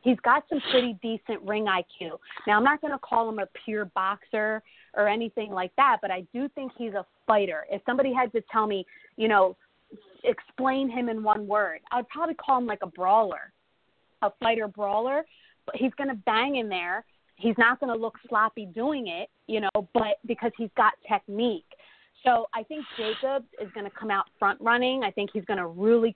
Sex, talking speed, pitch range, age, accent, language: female, 205 wpm, 205-245 Hz, 30-49, American, English